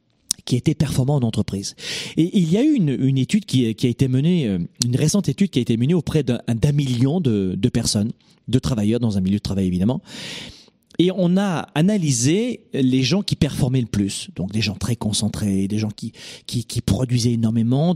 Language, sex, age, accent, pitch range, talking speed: French, male, 40-59, French, 120-175 Hz, 205 wpm